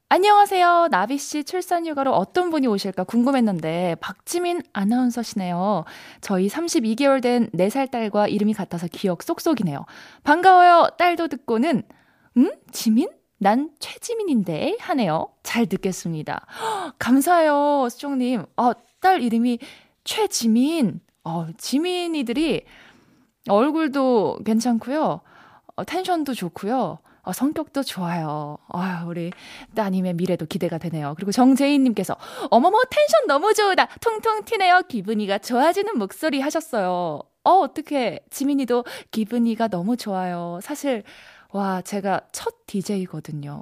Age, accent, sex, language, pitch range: 20-39, native, female, Korean, 195-310 Hz